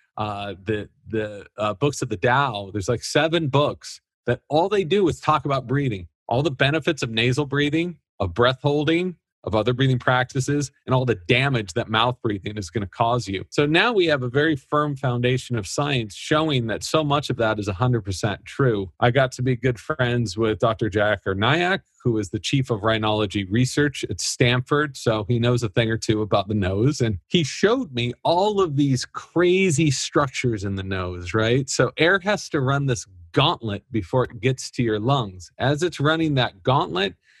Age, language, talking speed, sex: 40-59, English, 200 wpm, male